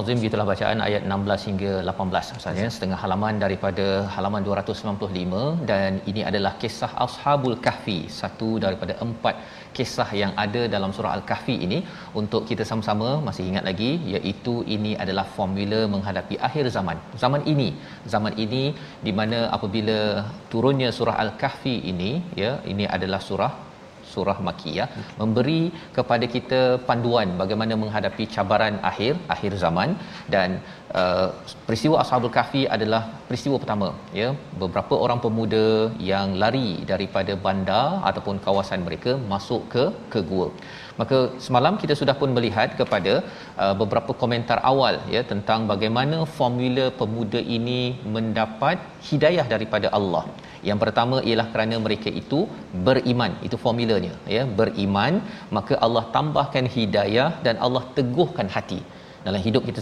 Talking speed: 135 wpm